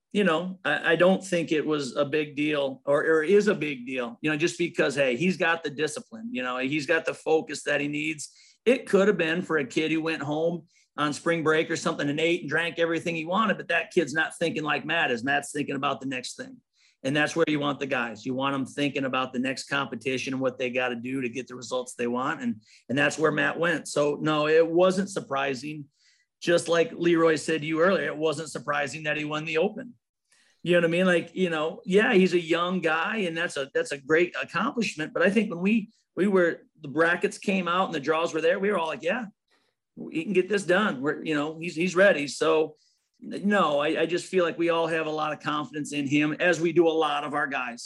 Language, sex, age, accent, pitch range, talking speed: English, male, 40-59, American, 145-175 Hz, 250 wpm